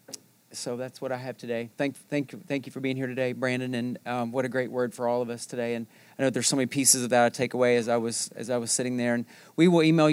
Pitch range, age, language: 120-135 Hz, 40-59, English